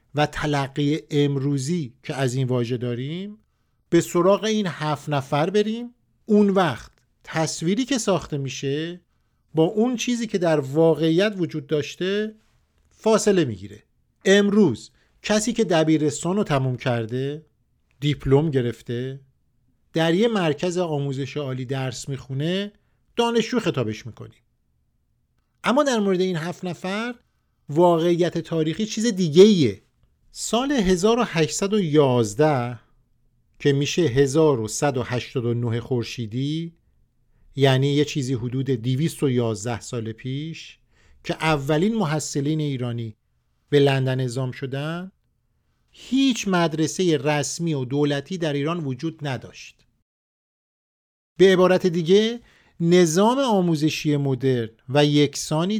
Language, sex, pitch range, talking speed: Persian, male, 135-185 Hz, 105 wpm